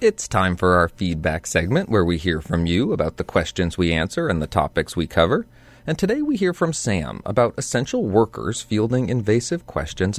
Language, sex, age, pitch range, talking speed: English, male, 30-49, 90-135 Hz, 195 wpm